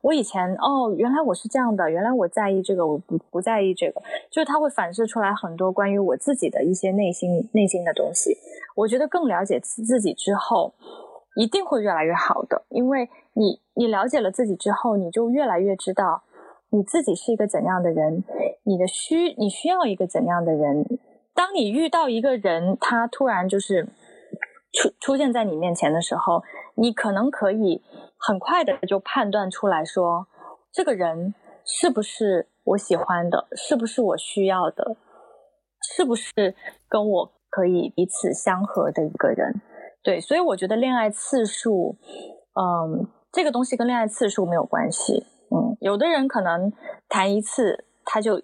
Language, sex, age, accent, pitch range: Chinese, female, 20-39, native, 185-255 Hz